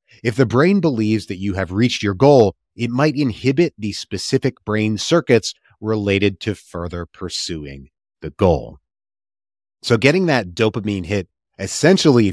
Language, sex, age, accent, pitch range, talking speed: English, male, 30-49, American, 95-120 Hz, 140 wpm